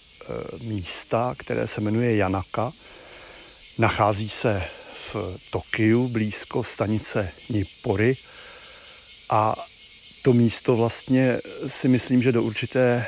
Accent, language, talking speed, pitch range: native, Czech, 95 wpm, 110-125 Hz